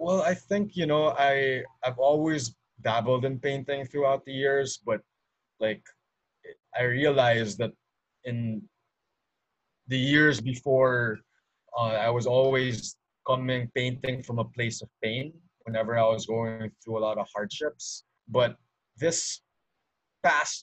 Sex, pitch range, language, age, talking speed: male, 115-140 Hz, English, 20-39, 135 wpm